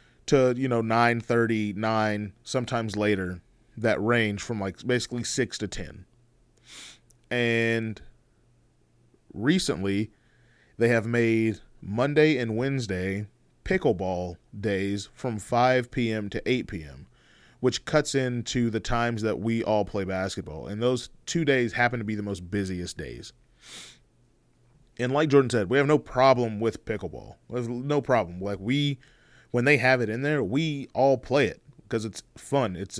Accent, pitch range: American, 105-125 Hz